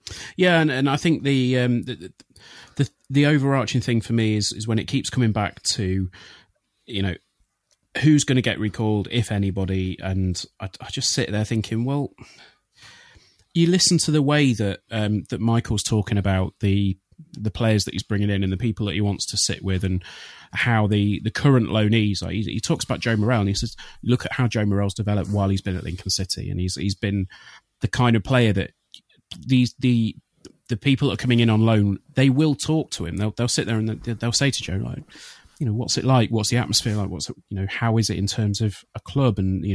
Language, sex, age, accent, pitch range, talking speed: English, male, 30-49, British, 100-125 Hz, 230 wpm